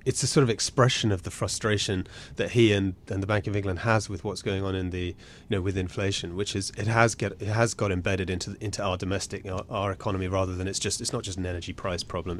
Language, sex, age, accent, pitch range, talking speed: English, male, 30-49, British, 100-120 Hz, 260 wpm